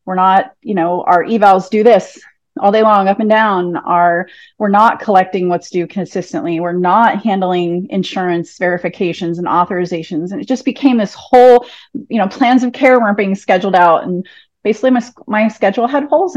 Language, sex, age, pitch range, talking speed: English, female, 30-49, 180-240 Hz, 180 wpm